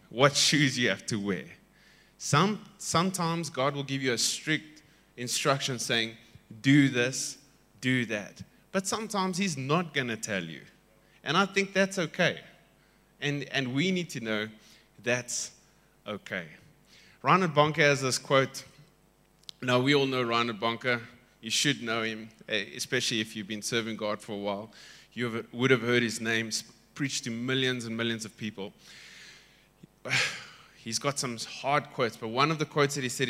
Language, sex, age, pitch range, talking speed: English, male, 20-39, 115-150 Hz, 165 wpm